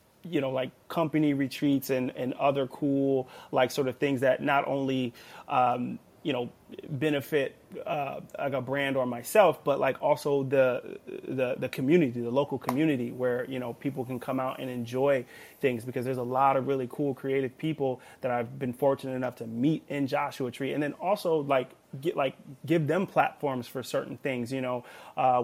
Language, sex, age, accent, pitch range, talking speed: English, male, 30-49, American, 130-145 Hz, 190 wpm